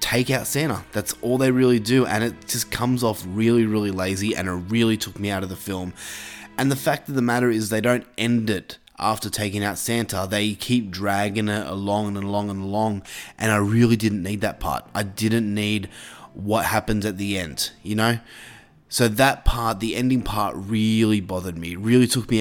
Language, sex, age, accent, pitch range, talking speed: English, male, 20-39, Australian, 100-125 Hz, 210 wpm